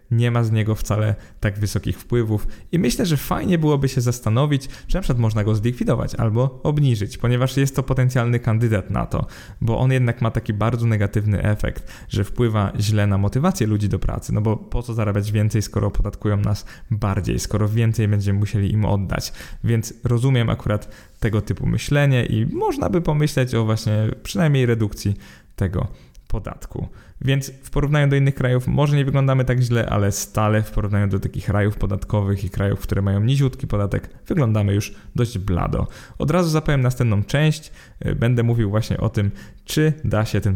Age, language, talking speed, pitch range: 20-39, Polish, 180 wpm, 105-125 Hz